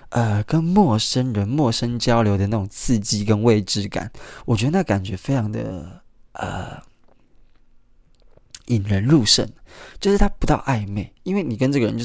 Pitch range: 110-140 Hz